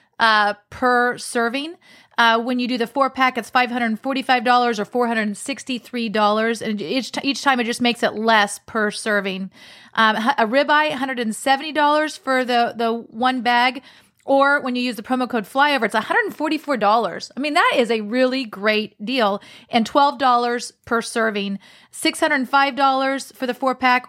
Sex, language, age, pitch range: female, English, 30-49, 225-275 Hz